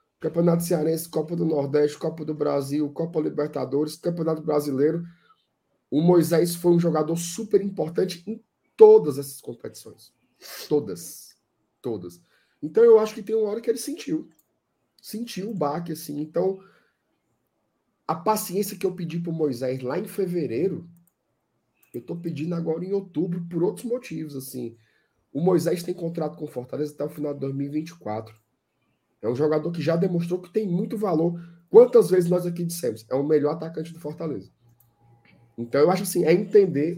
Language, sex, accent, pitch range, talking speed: Portuguese, male, Brazilian, 145-175 Hz, 160 wpm